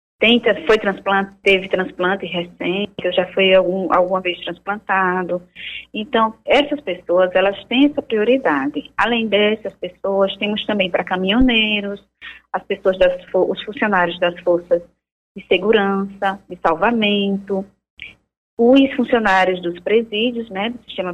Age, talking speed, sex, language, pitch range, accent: 20-39, 130 wpm, female, Portuguese, 185-245 Hz, Brazilian